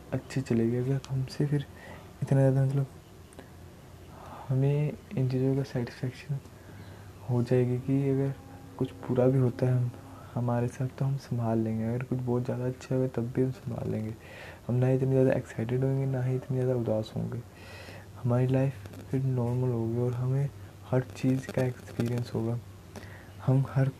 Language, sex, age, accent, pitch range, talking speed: Hindi, male, 20-39, native, 100-130 Hz, 170 wpm